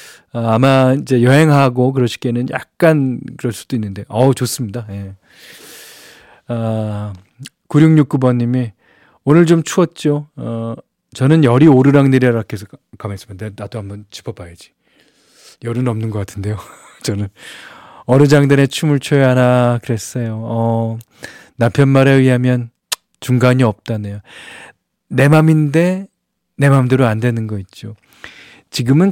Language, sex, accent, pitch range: Korean, male, native, 115-145 Hz